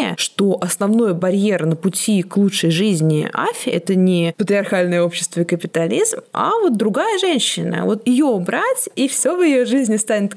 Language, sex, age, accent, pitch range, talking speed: Russian, female, 20-39, native, 170-220 Hz, 160 wpm